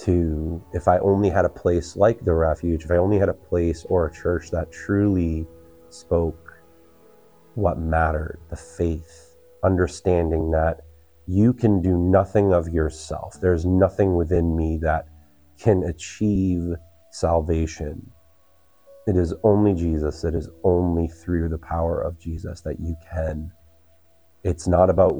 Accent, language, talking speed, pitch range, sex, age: American, English, 145 wpm, 80-90 Hz, male, 30-49